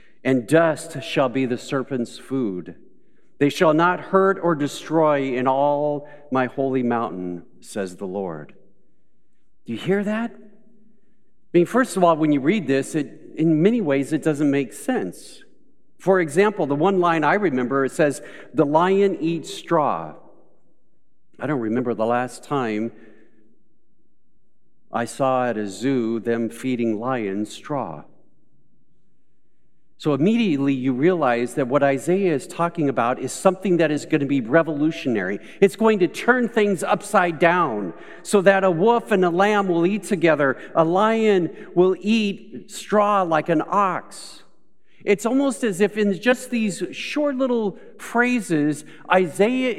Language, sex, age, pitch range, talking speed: English, male, 50-69, 135-200 Hz, 150 wpm